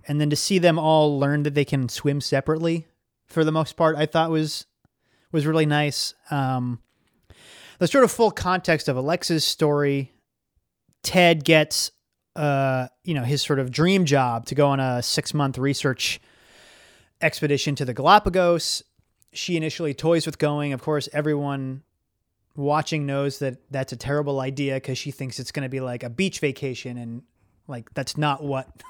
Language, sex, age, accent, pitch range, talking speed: English, male, 30-49, American, 130-160 Hz, 170 wpm